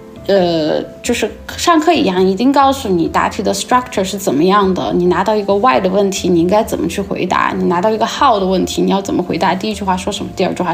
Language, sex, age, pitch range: Chinese, female, 20-39, 185-240 Hz